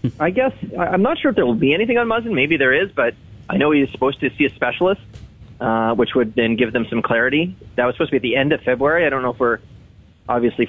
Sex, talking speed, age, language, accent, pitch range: male, 270 wpm, 30-49, English, American, 115-145 Hz